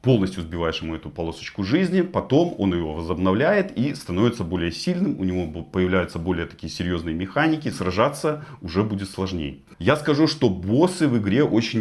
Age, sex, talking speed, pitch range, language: 30-49, male, 165 wpm, 95-120 Hz, Russian